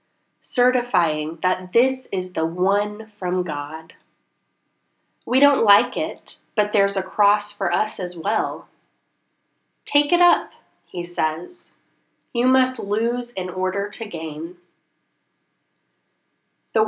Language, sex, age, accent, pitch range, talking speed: English, female, 10-29, American, 155-205 Hz, 115 wpm